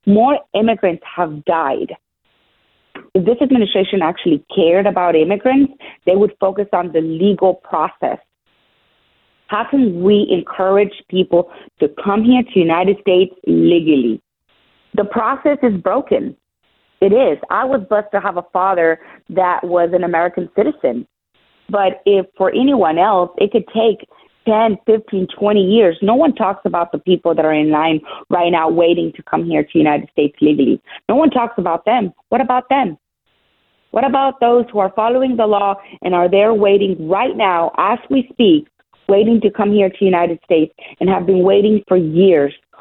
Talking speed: 165 wpm